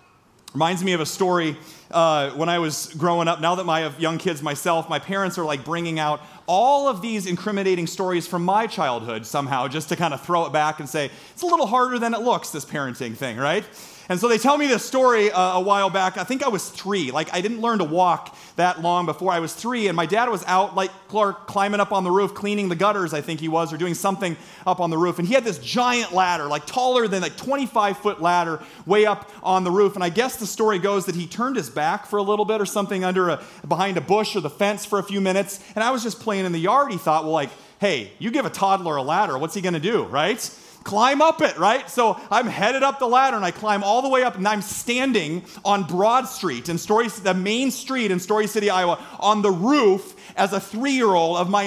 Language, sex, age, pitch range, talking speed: English, male, 30-49, 170-235 Hz, 255 wpm